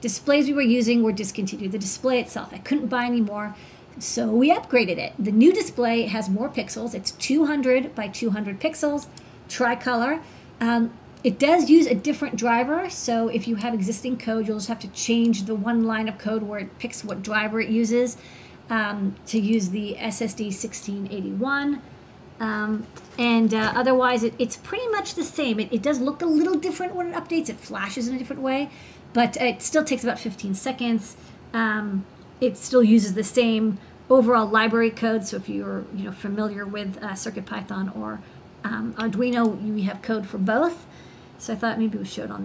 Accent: American